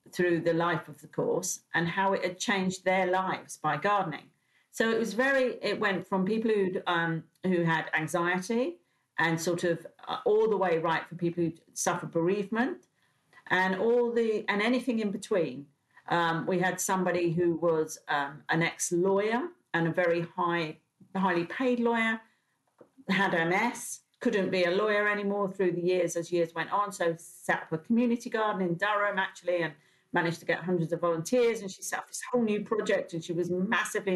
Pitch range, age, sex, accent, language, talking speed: 170-215 Hz, 50-69, female, British, English, 185 wpm